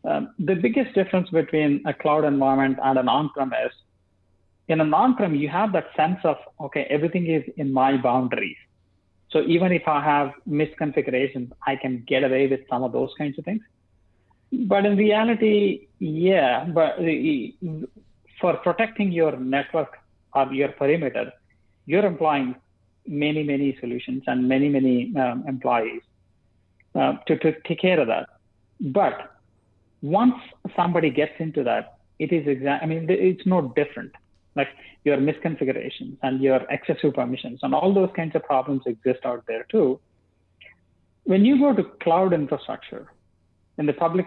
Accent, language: Indian, English